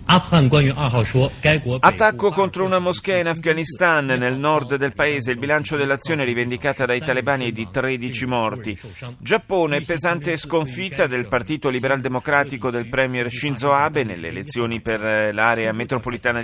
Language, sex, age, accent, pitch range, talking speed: Italian, male, 40-59, native, 110-140 Hz, 140 wpm